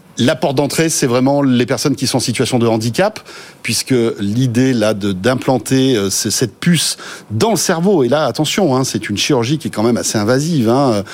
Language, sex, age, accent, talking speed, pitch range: French, male, 40-59, French, 200 wpm, 115-160 Hz